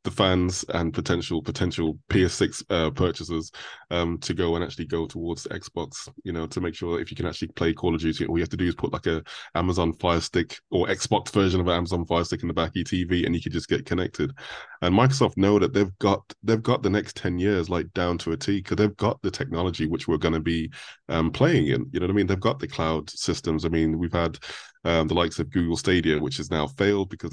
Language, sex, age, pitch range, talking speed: English, male, 20-39, 80-95 Hz, 255 wpm